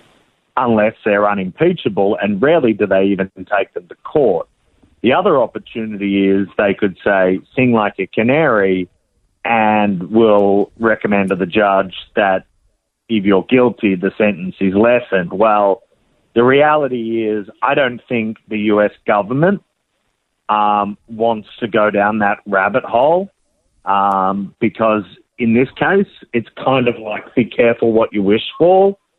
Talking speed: 145 wpm